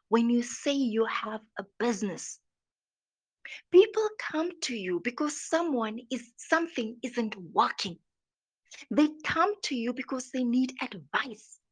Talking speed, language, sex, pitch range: 130 wpm, English, female, 220-285 Hz